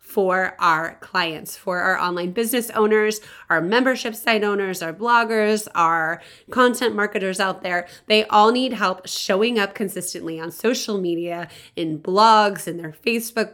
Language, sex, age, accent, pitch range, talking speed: English, female, 20-39, American, 180-230 Hz, 150 wpm